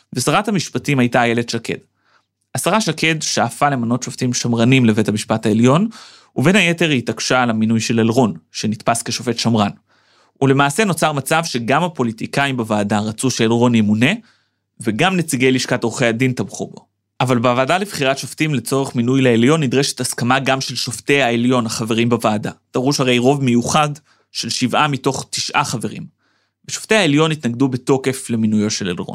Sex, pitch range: male, 120-150 Hz